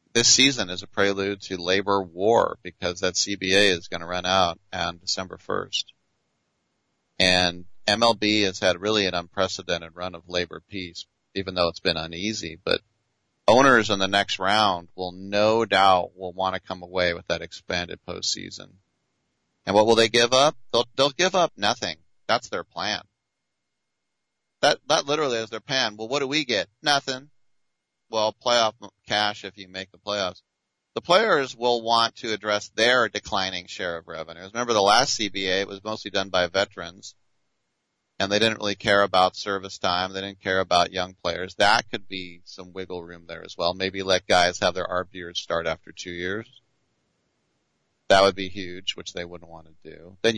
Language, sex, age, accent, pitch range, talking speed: English, male, 30-49, American, 90-110 Hz, 180 wpm